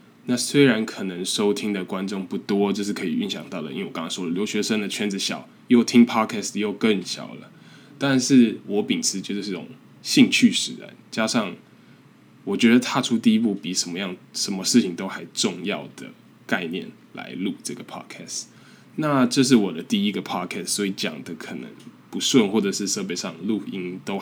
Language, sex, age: Chinese, male, 10-29